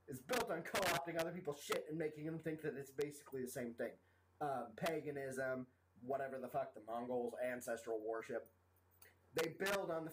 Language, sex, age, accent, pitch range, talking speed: English, male, 30-49, American, 115-175 Hz, 180 wpm